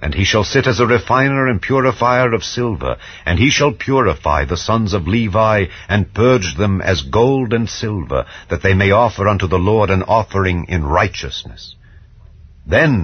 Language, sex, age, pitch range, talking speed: English, male, 60-79, 85-115 Hz, 175 wpm